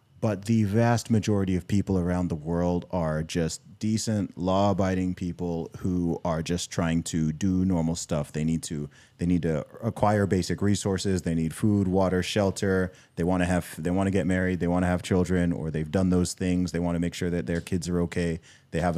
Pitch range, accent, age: 90-110 Hz, American, 30-49